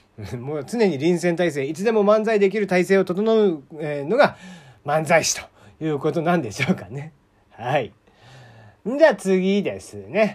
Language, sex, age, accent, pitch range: Japanese, male, 40-59, native, 150-220 Hz